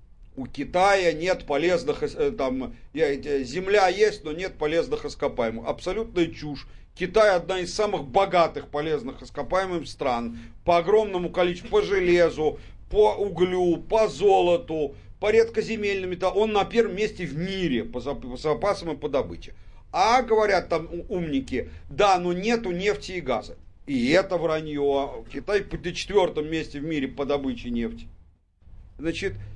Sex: male